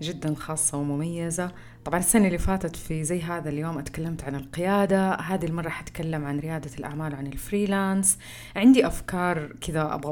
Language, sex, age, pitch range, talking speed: Arabic, female, 30-49, 145-180 Hz, 155 wpm